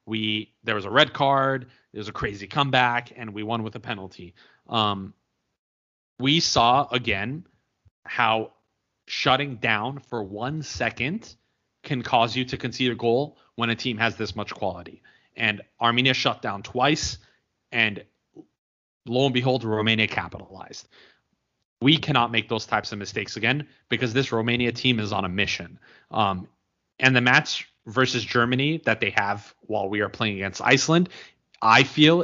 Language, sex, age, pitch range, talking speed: English, male, 30-49, 105-130 Hz, 160 wpm